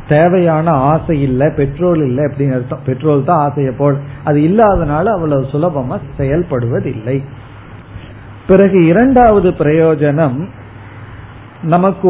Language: Tamil